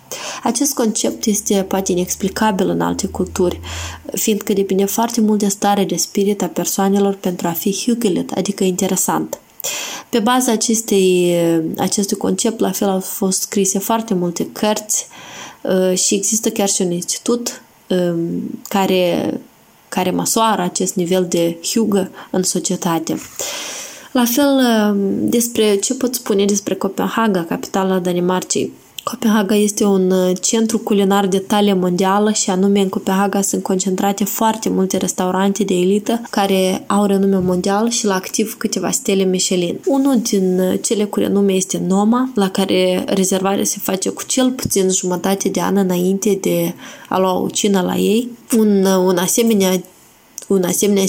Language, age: Romanian, 20-39